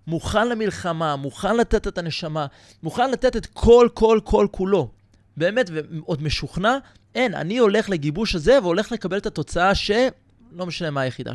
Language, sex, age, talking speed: Hebrew, male, 20-39, 160 wpm